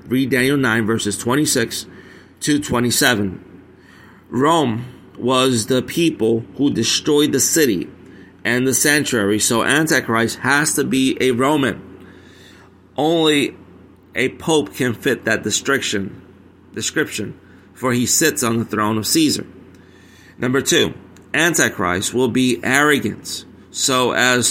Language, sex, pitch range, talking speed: English, male, 95-130 Hz, 120 wpm